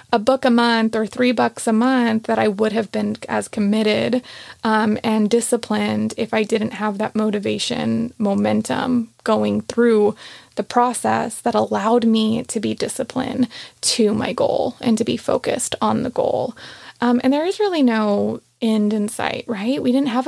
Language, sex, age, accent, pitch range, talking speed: English, female, 20-39, American, 215-245 Hz, 175 wpm